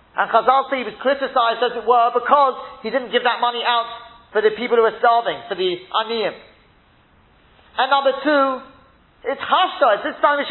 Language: English